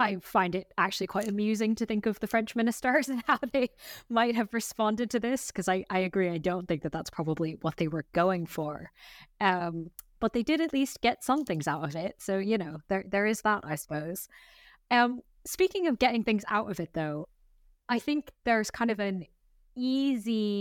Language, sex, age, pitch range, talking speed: English, female, 20-39, 170-230 Hz, 210 wpm